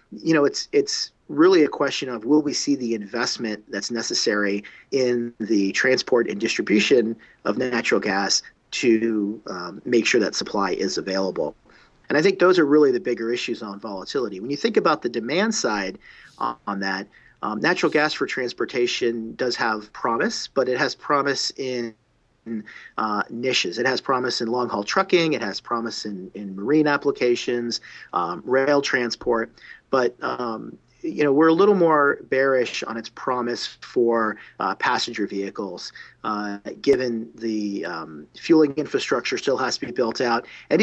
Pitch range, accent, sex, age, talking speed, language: 105-150 Hz, American, male, 40-59, 165 wpm, English